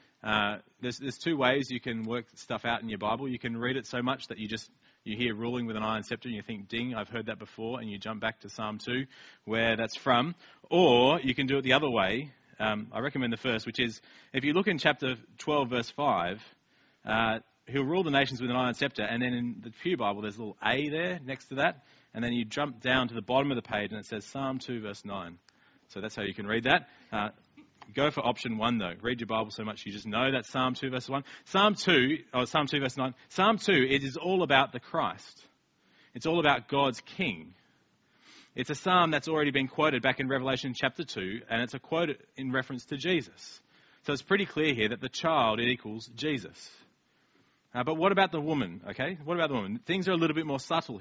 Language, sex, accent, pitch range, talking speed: English, male, Australian, 115-145 Hz, 240 wpm